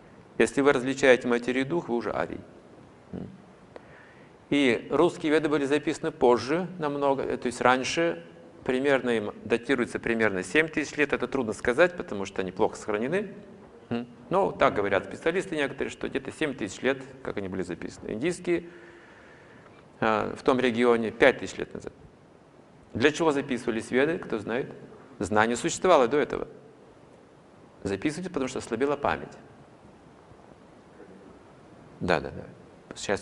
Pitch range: 115-150 Hz